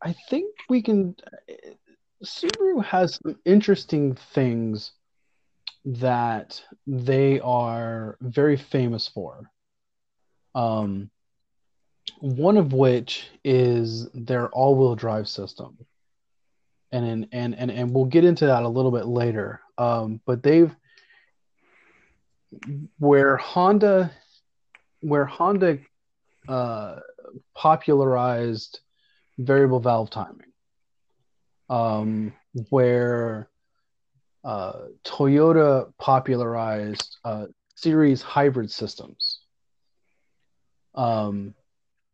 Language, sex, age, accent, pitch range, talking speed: English, male, 30-49, American, 115-150 Hz, 85 wpm